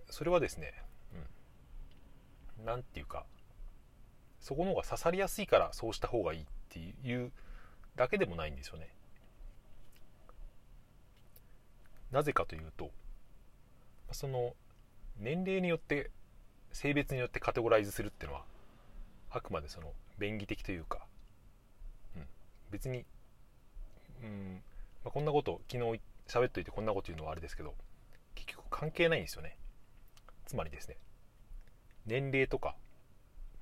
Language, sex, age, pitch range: Japanese, male, 30-49, 95-125 Hz